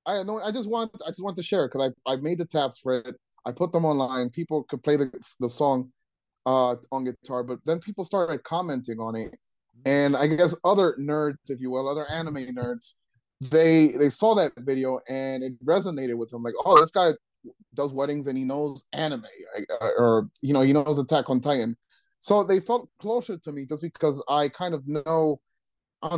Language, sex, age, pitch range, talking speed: English, male, 30-49, 130-170 Hz, 210 wpm